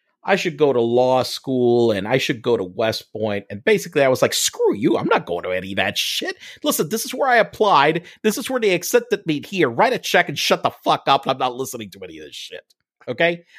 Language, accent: English, American